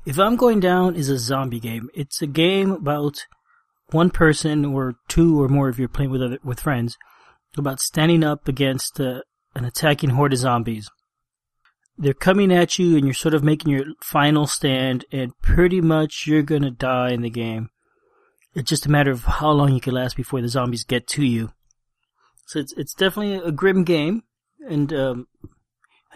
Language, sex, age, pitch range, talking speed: English, male, 30-49, 130-165 Hz, 185 wpm